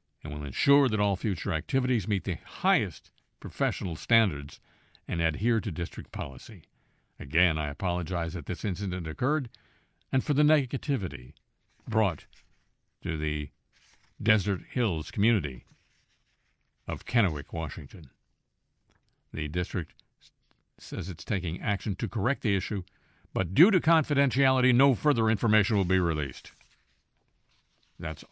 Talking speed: 125 wpm